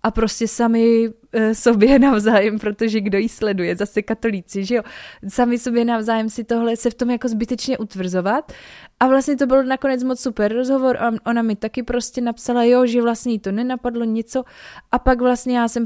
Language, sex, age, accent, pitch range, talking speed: Czech, female, 20-39, native, 210-240 Hz, 195 wpm